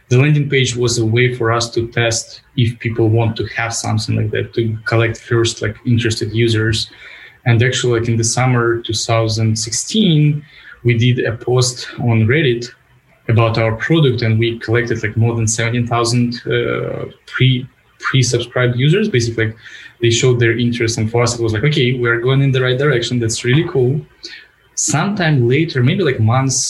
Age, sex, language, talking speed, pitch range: 20-39, male, English, 175 wpm, 115-130 Hz